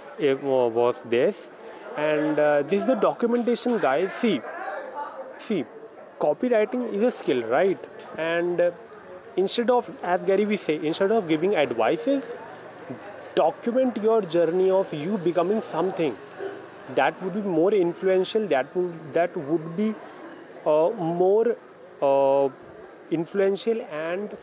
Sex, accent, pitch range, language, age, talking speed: male, Indian, 155-220 Hz, English, 30-49, 125 wpm